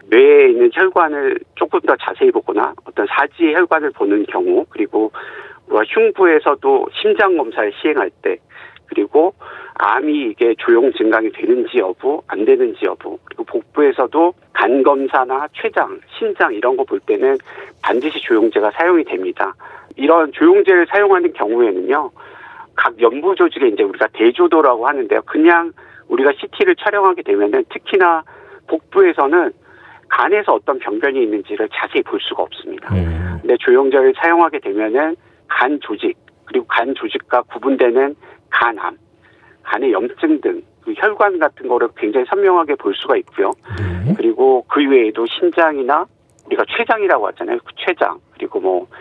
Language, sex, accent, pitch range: Korean, male, native, 345-400 Hz